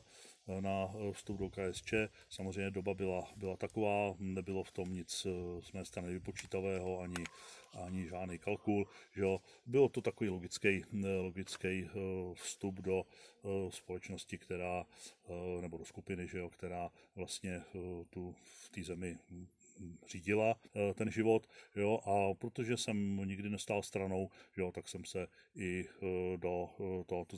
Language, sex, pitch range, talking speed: Czech, male, 90-100 Hz, 130 wpm